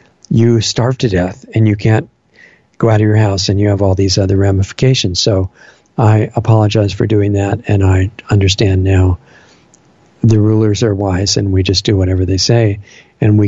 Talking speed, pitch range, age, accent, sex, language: 185 wpm, 100-115 Hz, 50-69, American, male, English